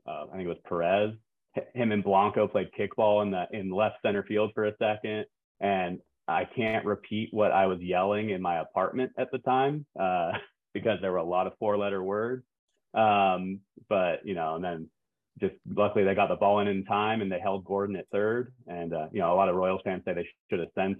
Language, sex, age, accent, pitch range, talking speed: English, male, 30-49, American, 95-105 Hz, 225 wpm